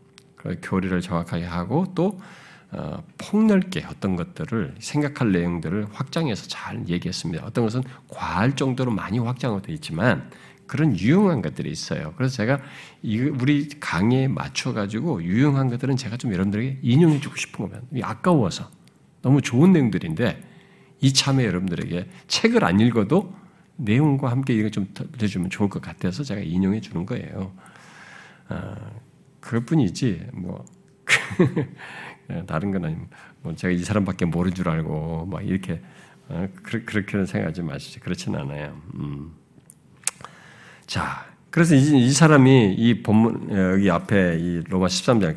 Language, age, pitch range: Korean, 50-69, 95-155 Hz